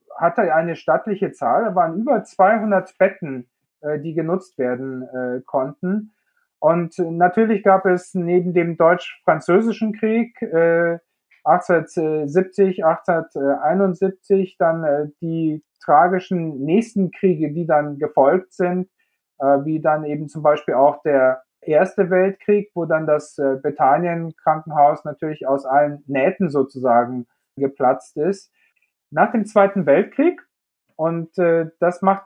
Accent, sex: German, male